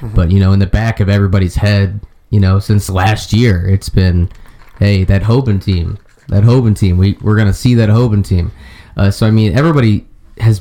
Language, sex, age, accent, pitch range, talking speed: English, male, 20-39, American, 95-115 Hz, 210 wpm